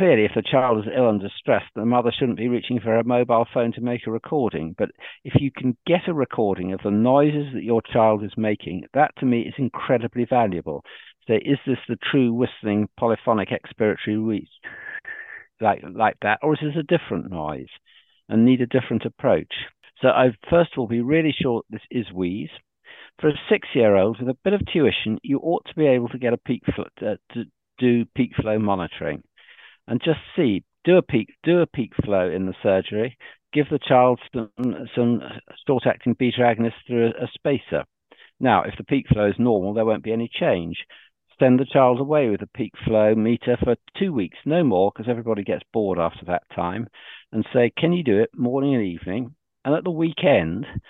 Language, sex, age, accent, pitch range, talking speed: English, male, 50-69, British, 110-140 Hz, 205 wpm